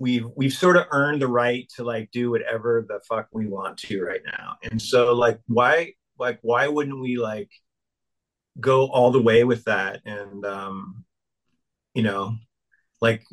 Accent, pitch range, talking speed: American, 115-140 Hz, 170 wpm